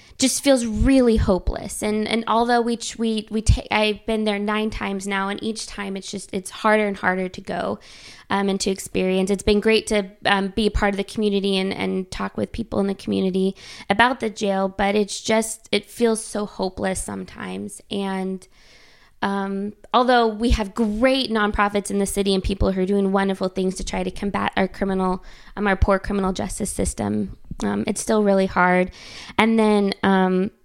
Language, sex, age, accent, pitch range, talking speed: English, female, 20-39, American, 190-215 Hz, 195 wpm